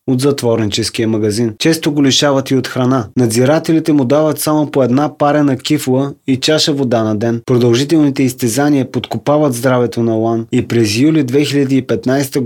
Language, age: Bulgarian, 20-39